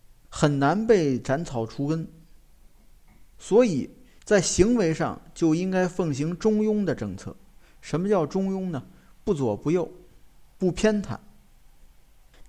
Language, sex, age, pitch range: Chinese, male, 50-69, 130-180 Hz